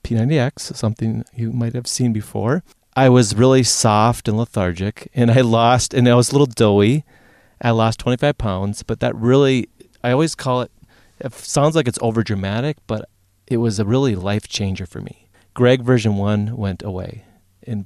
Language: English